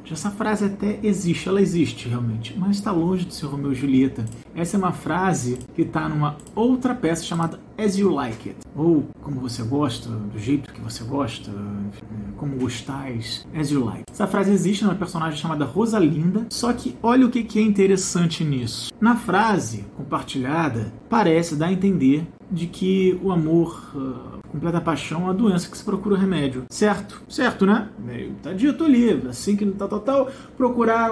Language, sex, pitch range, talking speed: Portuguese, male, 135-205 Hz, 185 wpm